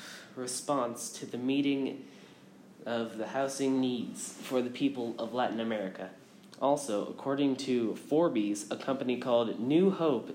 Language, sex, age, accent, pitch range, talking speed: English, male, 20-39, American, 115-140 Hz, 135 wpm